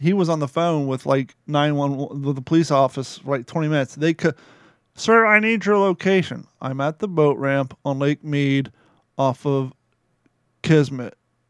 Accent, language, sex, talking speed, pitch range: American, English, male, 165 wpm, 140-175 Hz